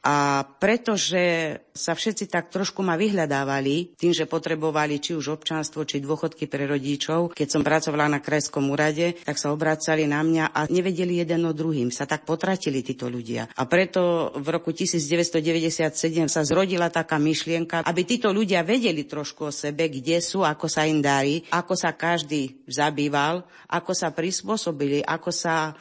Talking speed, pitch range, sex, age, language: 165 wpm, 140-170 Hz, female, 40-59, Slovak